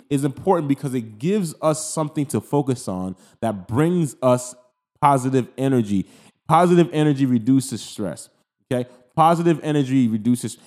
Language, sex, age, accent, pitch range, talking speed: English, male, 30-49, American, 120-155 Hz, 130 wpm